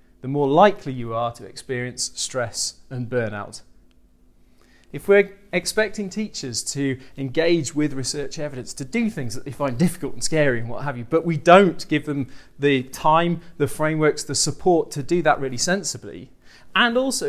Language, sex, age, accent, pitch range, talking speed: English, male, 30-49, British, 125-165 Hz, 175 wpm